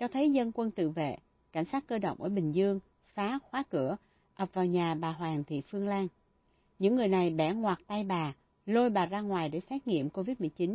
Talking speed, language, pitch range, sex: 220 wpm, Vietnamese, 165-215 Hz, female